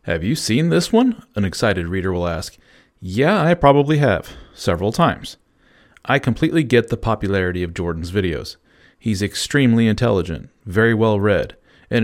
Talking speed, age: 155 wpm, 40-59